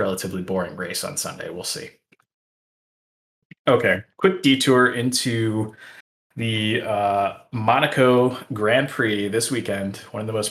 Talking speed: 125 wpm